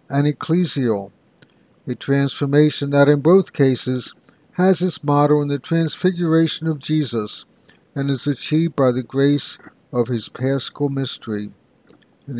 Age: 60-79